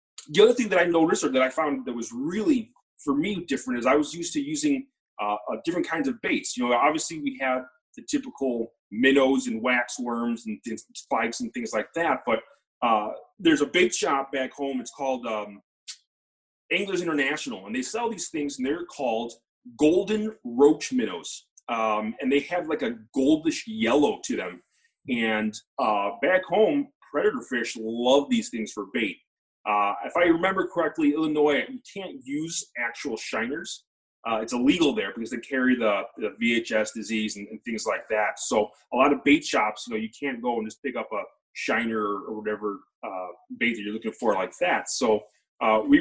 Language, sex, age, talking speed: English, male, 30-49, 190 wpm